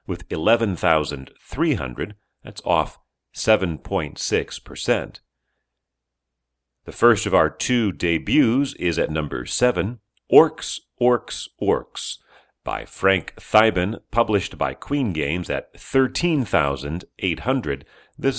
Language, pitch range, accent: English, 70-105 Hz, American